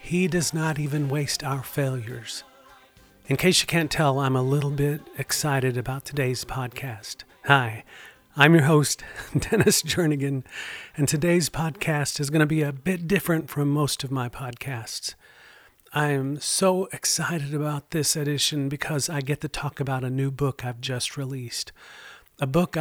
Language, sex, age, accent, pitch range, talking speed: English, male, 40-59, American, 130-150 Hz, 165 wpm